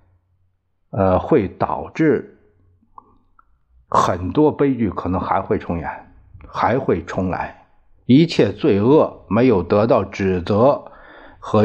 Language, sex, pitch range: Chinese, male, 90-105 Hz